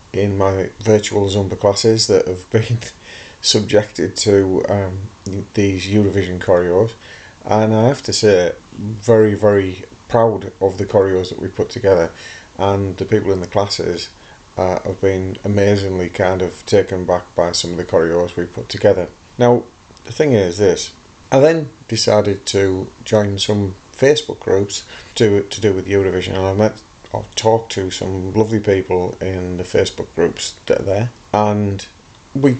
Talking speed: 160 wpm